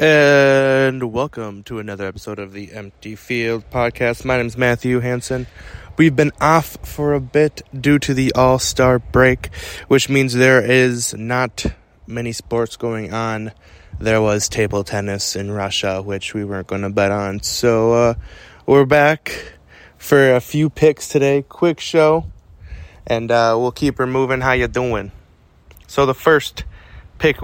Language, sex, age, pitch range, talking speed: English, male, 20-39, 105-130 Hz, 155 wpm